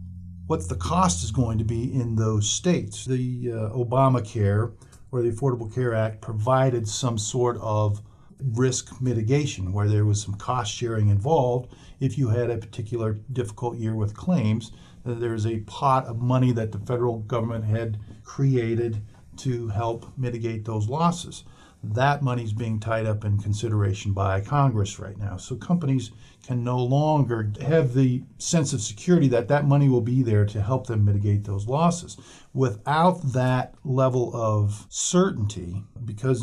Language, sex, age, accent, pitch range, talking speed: English, male, 50-69, American, 105-125 Hz, 155 wpm